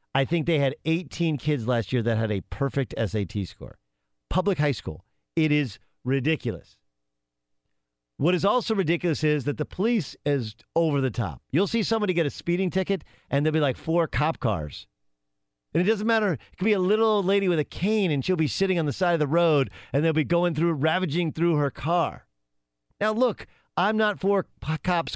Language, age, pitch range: English, 40-59, 120-175 Hz